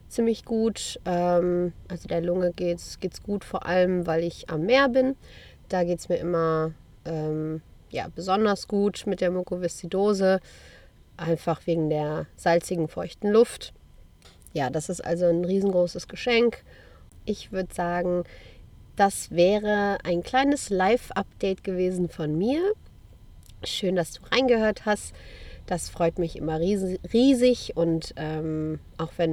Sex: female